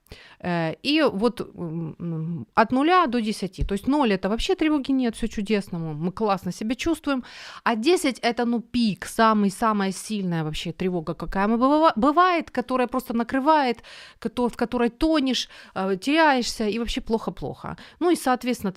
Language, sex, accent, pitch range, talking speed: Ukrainian, female, native, 180-255 Hz, 140 wpm